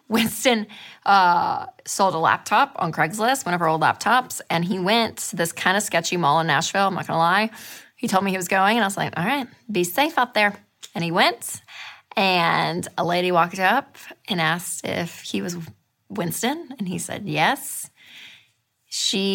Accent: American